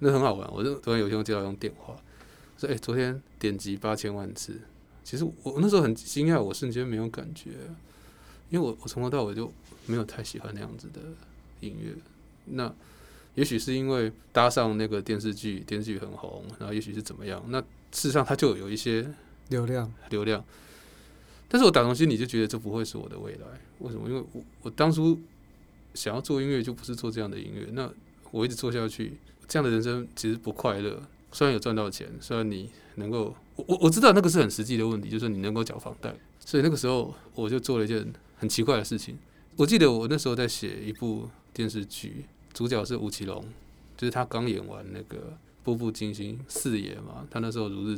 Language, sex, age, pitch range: Chinese, male, 20-39, 105-130 Hz